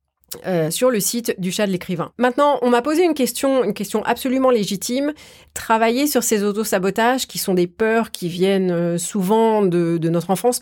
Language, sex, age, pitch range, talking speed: French, female, 30-49, 185-245 Hz, 185 wpm